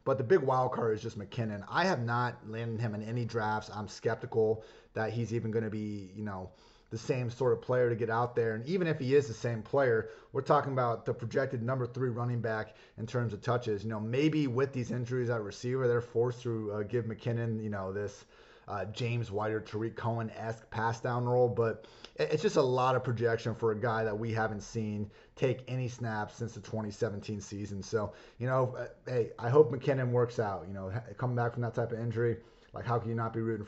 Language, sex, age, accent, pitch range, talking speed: English, male, 30-49, American, 110-125 Hz, 230 wpm